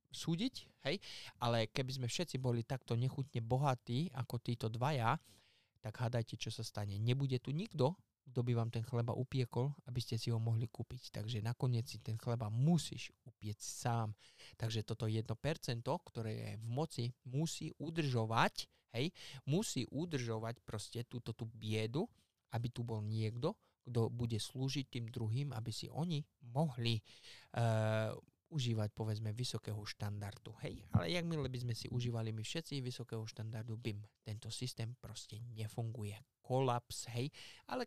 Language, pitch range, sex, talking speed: Slovak, 110-135 Hz, male, 150 wpm